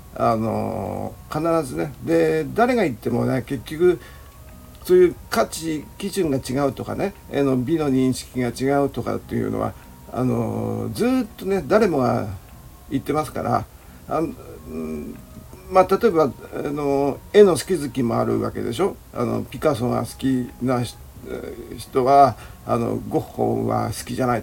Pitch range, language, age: 115-160 Hz, Japanese, 50-69